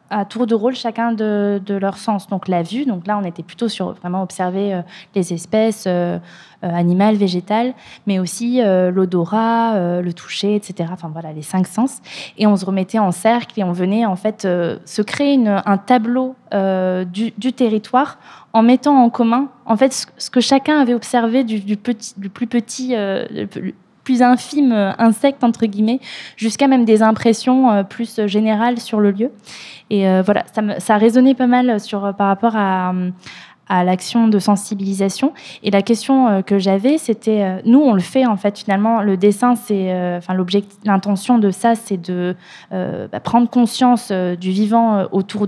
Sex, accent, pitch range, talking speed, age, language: female, French, 190-235 Hz, 185 wpm, 20-39, French